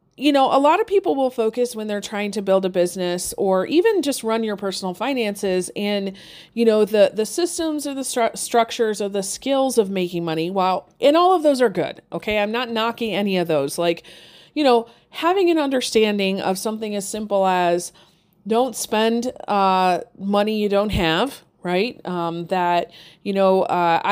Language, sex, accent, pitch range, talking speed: English, female, American, 185-230 Hz, 190 wpm